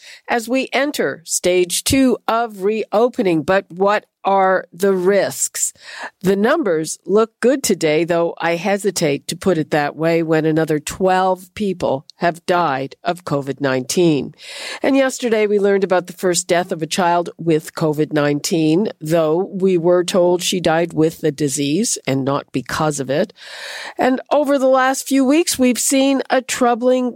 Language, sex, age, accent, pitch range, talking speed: English, female, 50-69, American, 160-215 Hz, 155 wpm